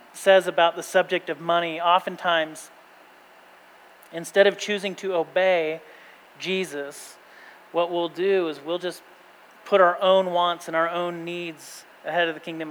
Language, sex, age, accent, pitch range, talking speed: English, male, 40-59, American, 155-180 Hz, 145 wpm